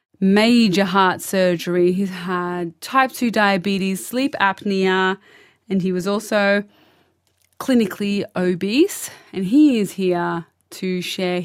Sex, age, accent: female, 20-39, Australian